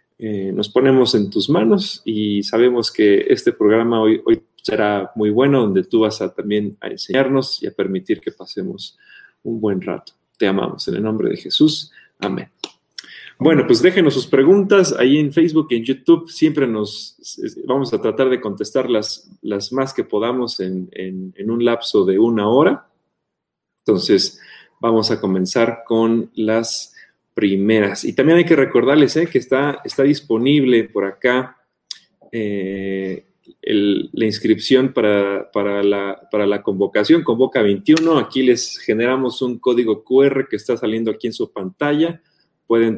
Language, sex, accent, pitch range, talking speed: Spanish, male, Mexican, 105-145 Hz, 155 wpm